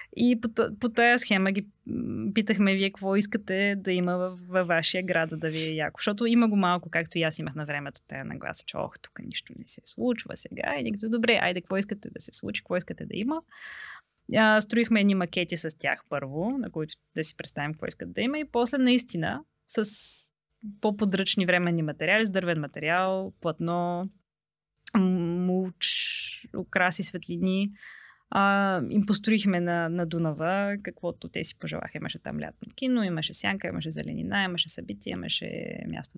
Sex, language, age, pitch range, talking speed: female, Bulgarian, 20-39, 170-215 Hz, 175 wpm